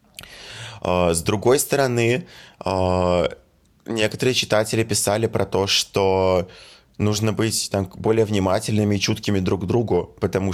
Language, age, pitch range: Russian, 20-39, 95-110 Hz